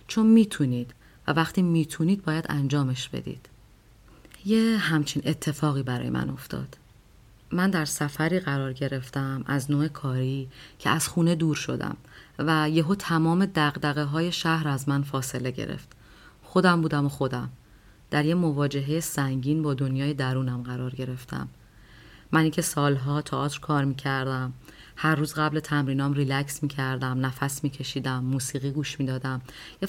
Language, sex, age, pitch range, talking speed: Persian, female, 30-49, 135-160 Hz, 145 wpm